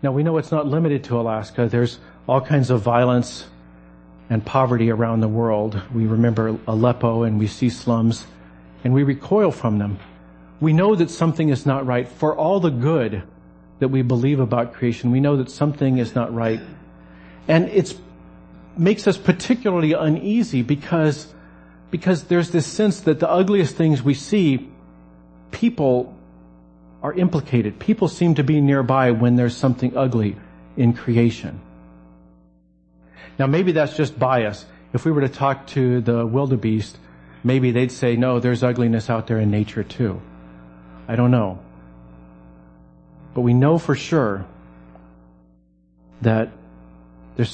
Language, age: English, 50-69